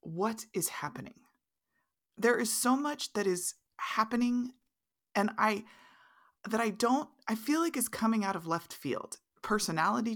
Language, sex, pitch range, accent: English, female, 180-245 Hz, American